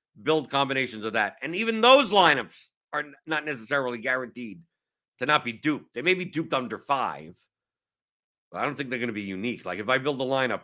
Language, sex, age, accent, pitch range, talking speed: English, male, 50-69, American, 105-135 Hz, 215 wpm